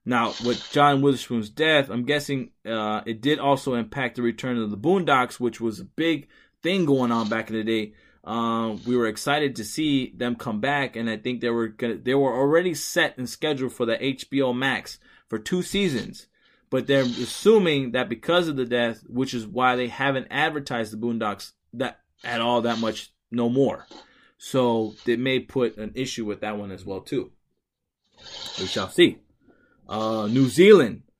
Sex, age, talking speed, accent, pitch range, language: male, 20-39, 185 wpm, American, 115-145 Hz, English